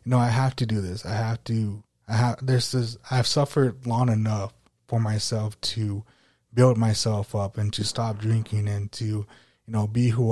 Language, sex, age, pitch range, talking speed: English, male, 20-39, 105-120 Hz, 205 wpm